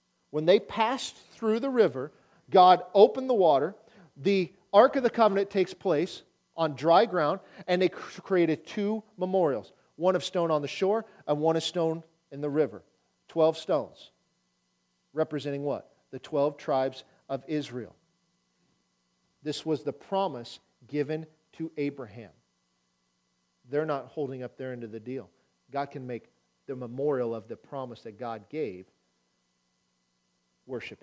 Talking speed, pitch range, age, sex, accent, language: 145 wpm, 120-180 Hz, 40-59, male, American, English